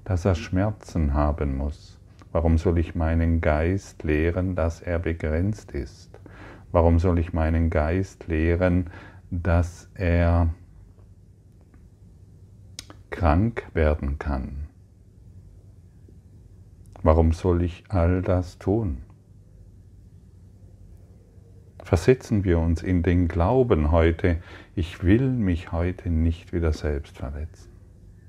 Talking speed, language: 100 wpm, German